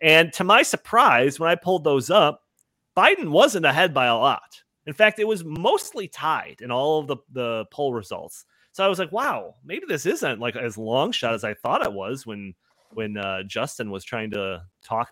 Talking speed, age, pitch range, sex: 210 wpm, 30-49, 120-190 Hz, male